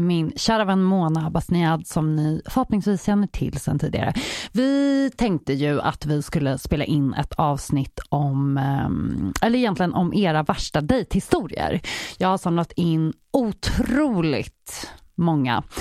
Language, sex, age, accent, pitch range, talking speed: English, female, 30-49, Swedish, 150-205 Hz, 135 wpm